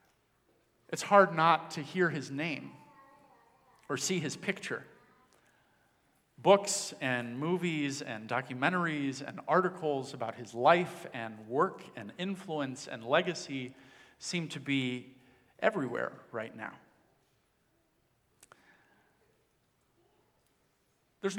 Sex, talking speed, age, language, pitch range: male, 95 wpm, 40-59, English, 135-180 Hz